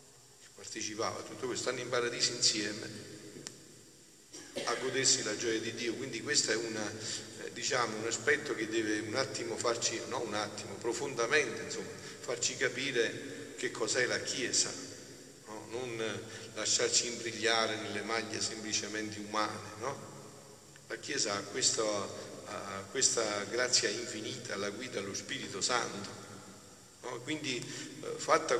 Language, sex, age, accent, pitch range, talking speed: Italian, male, 50-69, native, 105-120 Hz, 125 wpm